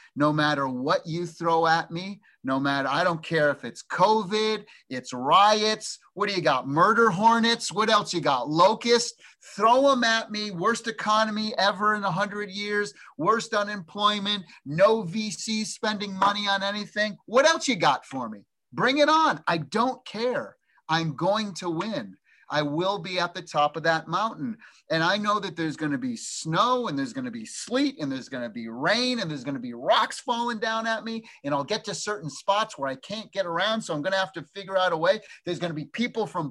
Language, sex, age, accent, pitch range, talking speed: English, male, 30-49, American, 160-225 Hz, 200 wpm